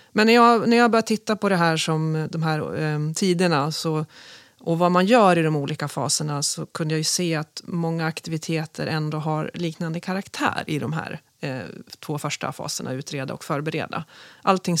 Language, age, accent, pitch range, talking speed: Swedish, 30-49, native, 150-175 Hz, 190 wpm